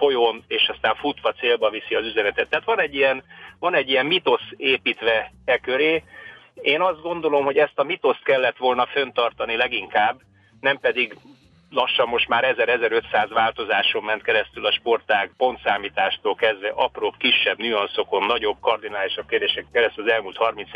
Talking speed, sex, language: 155 wpm, male, Hungarian